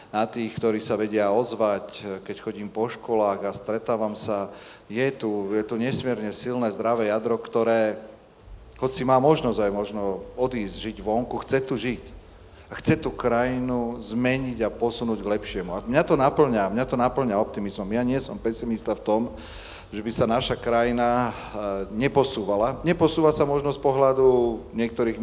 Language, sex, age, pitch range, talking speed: Slovak, male, 40-59, 105-125 Hz, 165 wpm